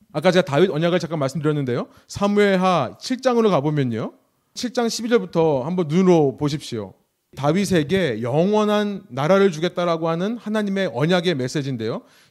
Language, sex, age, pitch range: Korean, male, 30-49, 145-205 Hz